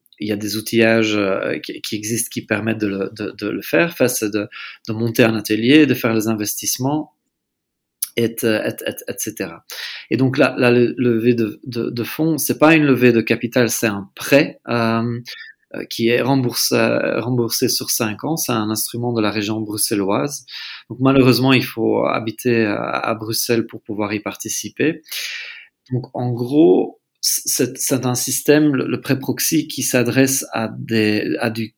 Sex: male